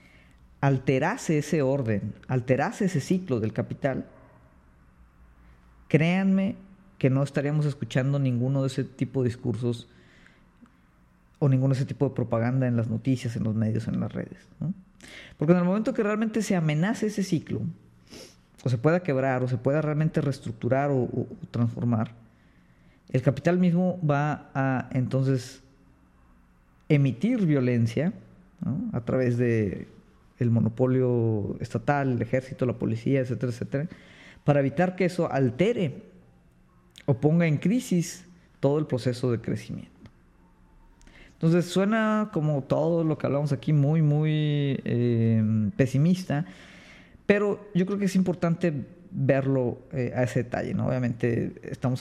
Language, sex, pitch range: Spanish, female, 120-155 Hz